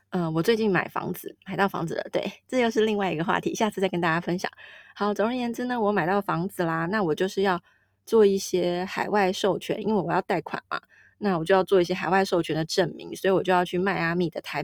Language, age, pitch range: Chinese, 20-39, 170-210 Hz